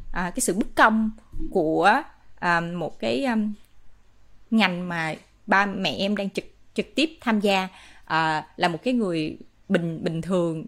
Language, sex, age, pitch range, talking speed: Vietnamese, female, 20-39, 190-255 Hz, 165 wpm